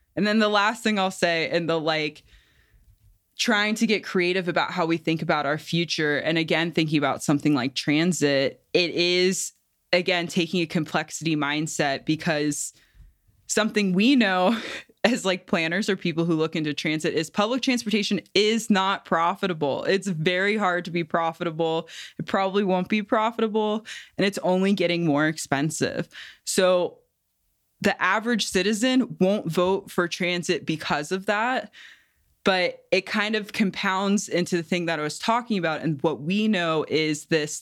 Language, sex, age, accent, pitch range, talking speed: English, female, 20-39, American, 155-195 Hz, 160 wpm